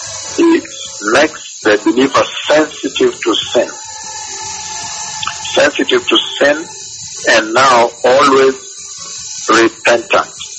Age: 60-79